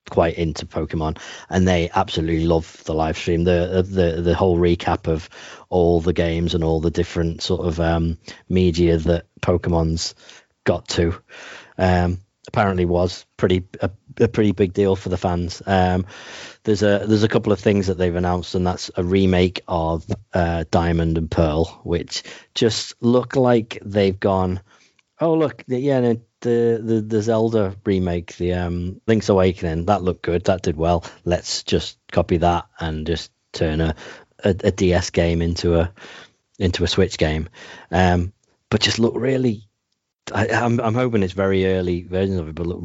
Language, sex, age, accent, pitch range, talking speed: English, male, 30-49, British, 85-100 Hz, 170 wpm